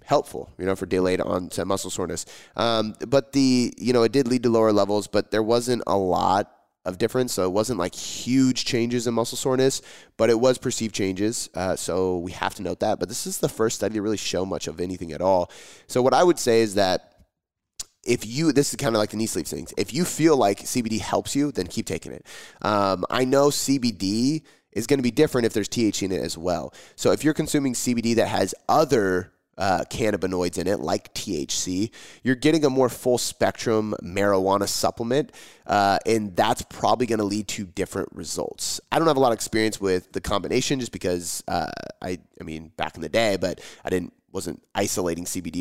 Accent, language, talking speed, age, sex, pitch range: American, English, 215 wpm, 20-39, male, 95-125 Hz